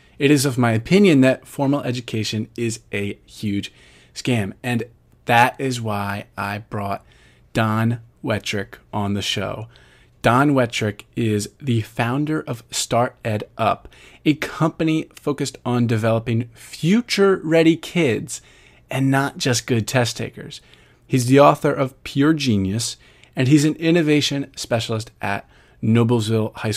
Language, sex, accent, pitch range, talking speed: English, male, American, 110-140 Hz, 130 wpm